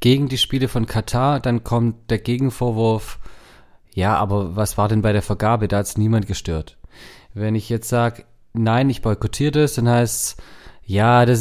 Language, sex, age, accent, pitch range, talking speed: German, male, 30-49, German, 105-130 Hz, 175 wpm